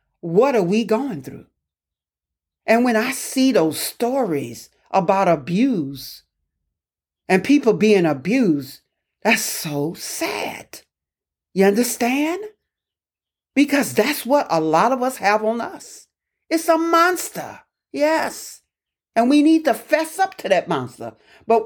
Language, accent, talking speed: English, American, 125 wpm